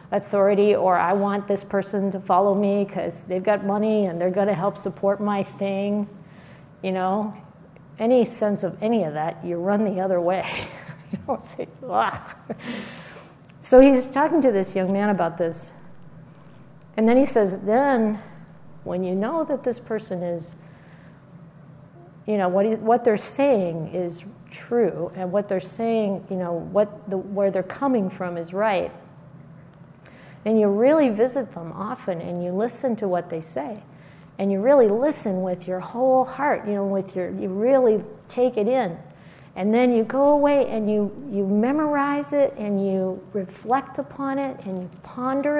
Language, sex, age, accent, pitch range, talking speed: English, female, 50-69, American, 170-220 Hz, 170 wpm